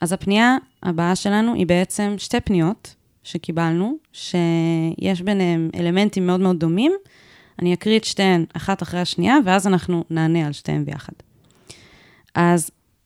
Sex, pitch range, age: female, 165-195 Hz, 20-39